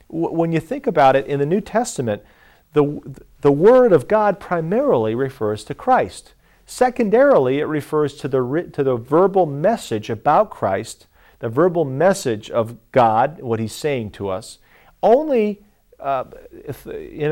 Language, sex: English, male